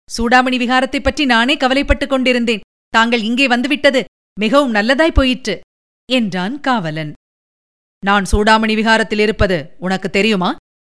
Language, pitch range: Tamil, 205-255 Hz